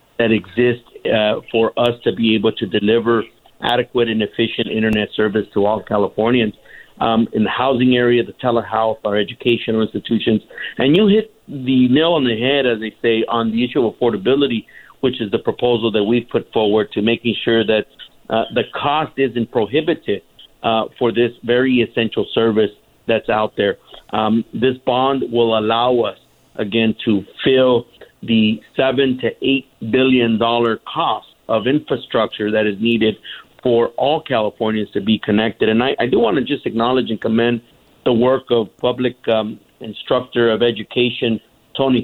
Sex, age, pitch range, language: male, 50-69, 110-125 Hz, English